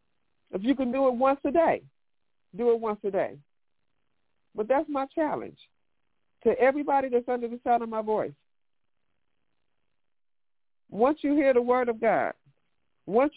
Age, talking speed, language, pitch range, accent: 50-69, 155 wpm, English, 215-270 Hz, American